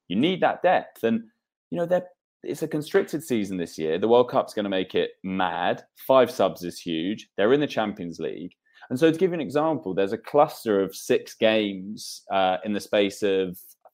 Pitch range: 95-140 Hz